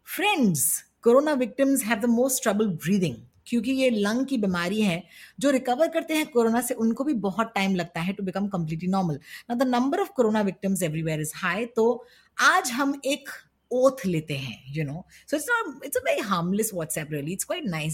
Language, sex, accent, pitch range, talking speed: Hindi, female, native, 175-250 Hz, 145 wpm